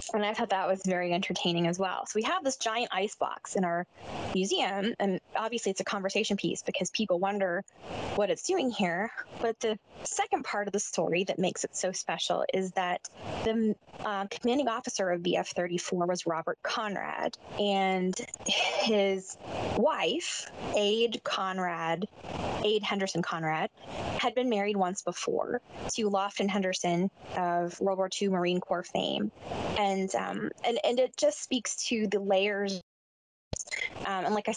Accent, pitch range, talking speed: American, 185-210 Hz, 160 wpm